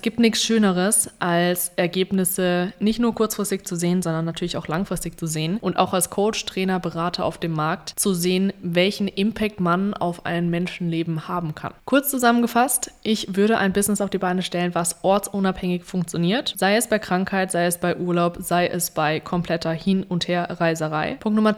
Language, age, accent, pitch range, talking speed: German, 20-39, German, 170-200 Hz, 185 wpm